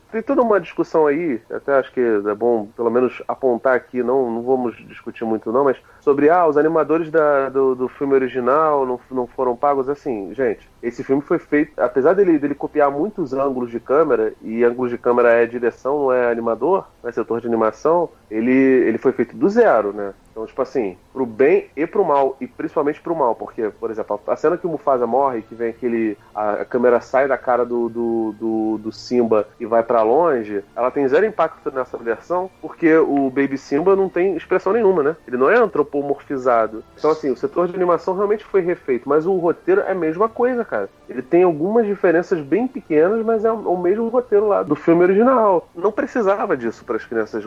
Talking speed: 205 wpm